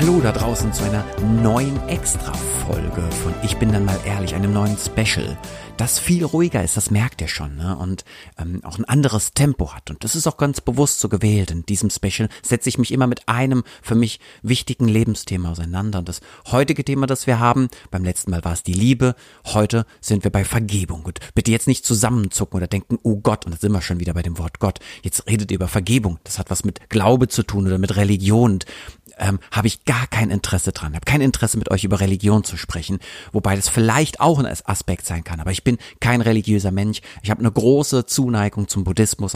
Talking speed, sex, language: 220 wpm, male, German